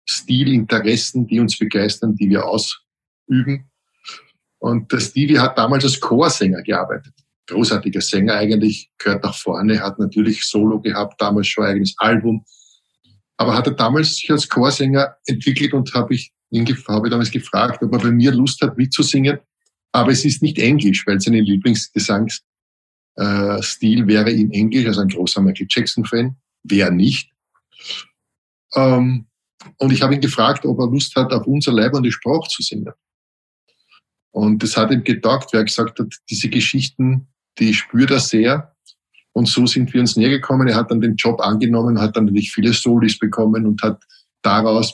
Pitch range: 105-130 Hz